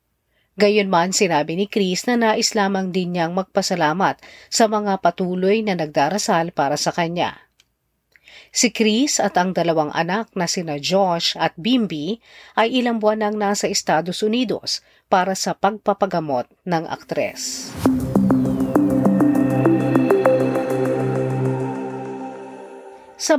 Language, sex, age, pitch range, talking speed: Filipino, female, 40-59, 170-230 Hz, 110 wpm